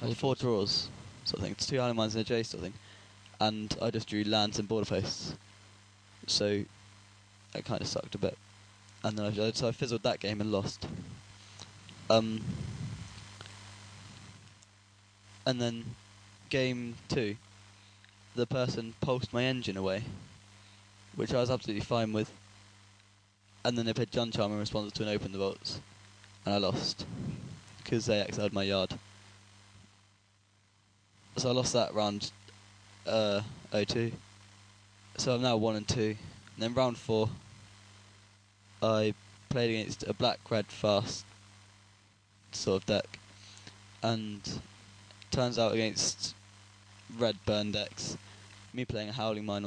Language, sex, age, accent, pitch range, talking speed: English, male, 10-29, British, 100-115 Hz, 145 wpm